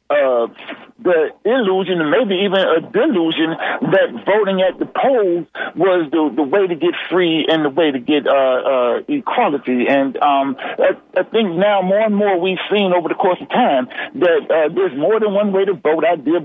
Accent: American